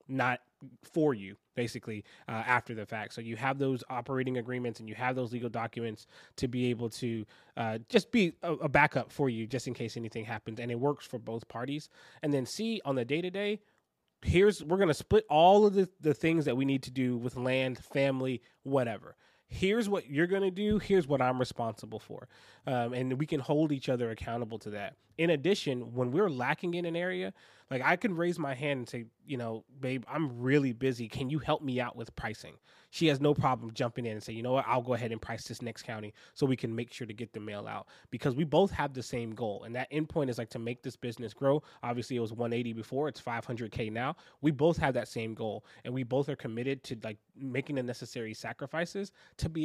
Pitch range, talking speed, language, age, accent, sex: 120-150 Hz, 230 wpm, English, 20-39, American, male